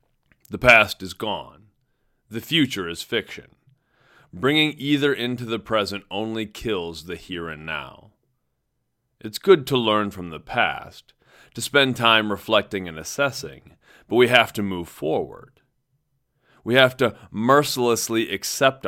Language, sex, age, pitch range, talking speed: English, male, 40-59, 105-135 Hz, 135 wpm